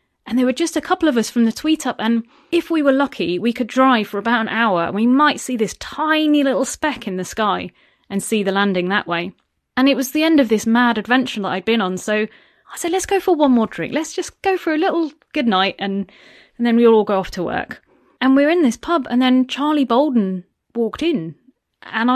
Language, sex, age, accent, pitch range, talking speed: English, female, 30-49, British, 210-275 Hz, 250 wpm